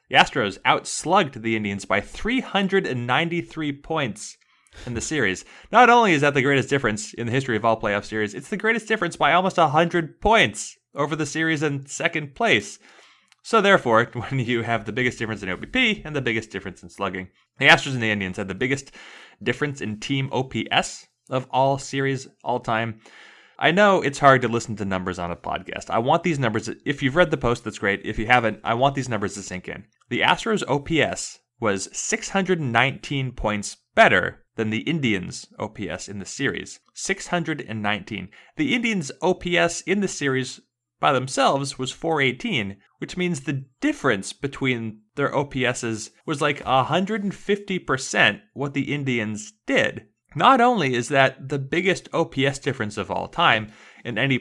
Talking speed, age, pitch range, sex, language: 170 wpm, 20-39, 110-165 Hz, male, English